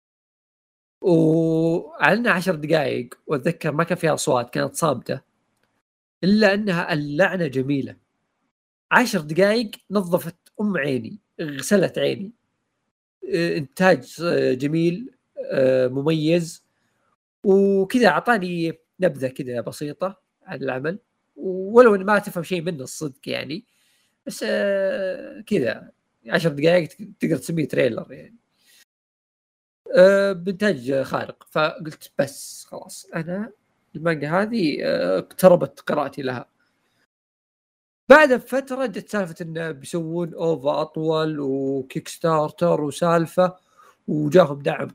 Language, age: Arabic, 40-59